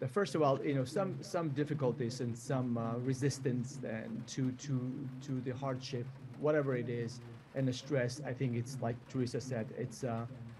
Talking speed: 180 wpm